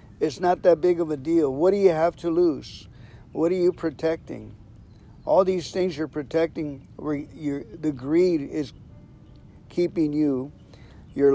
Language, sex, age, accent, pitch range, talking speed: English, male, 50-69, American, 140-175 Hz, 160 wpm